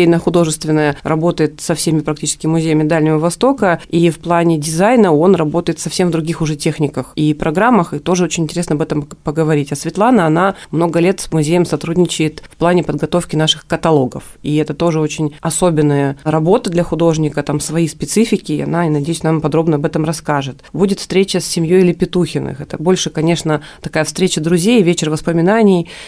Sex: female